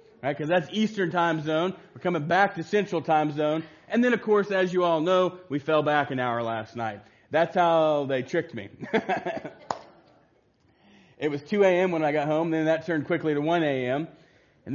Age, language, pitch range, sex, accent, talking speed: 40-59, English, 135-170 Hz, male, American, 195 wpm